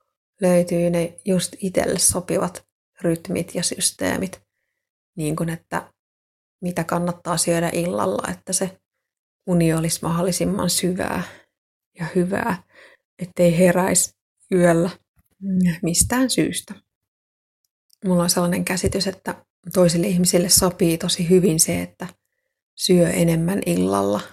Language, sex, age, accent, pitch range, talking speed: Finnish, female, 30-49, native, 170-185 Hz, 105 wpm